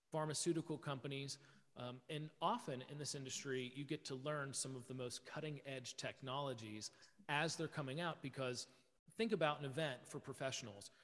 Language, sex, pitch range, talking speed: English, male, 125-145 Hz, 165 wpm